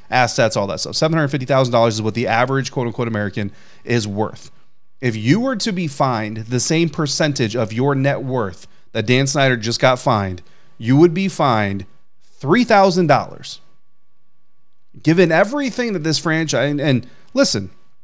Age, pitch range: 30-49, 115-155 Hz